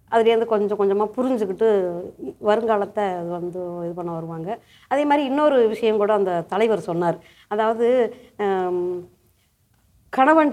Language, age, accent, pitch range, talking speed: Tamil, 30-49, native, 205-295 Hz, 110 wpm